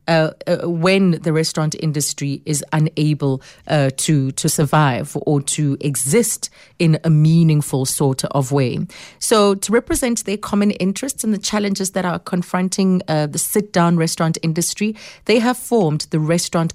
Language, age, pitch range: English, 30-49, 150-195 Hz